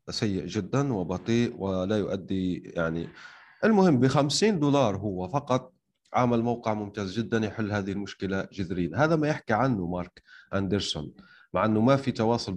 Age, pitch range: 30-49, 100-130 Hz